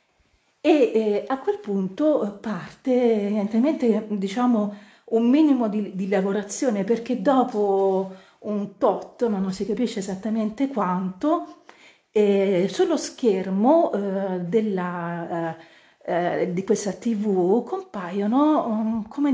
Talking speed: 110 wpm